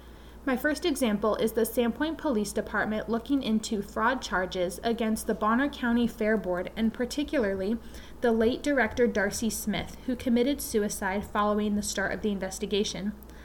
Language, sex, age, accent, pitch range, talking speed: English, female, 20-39, American, 205-250 Hz, 150 wpm